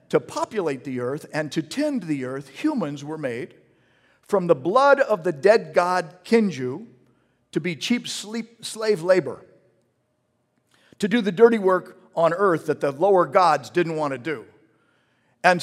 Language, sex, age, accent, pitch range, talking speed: English, male, 50-69, American, 140-220 Hz, 155 wpm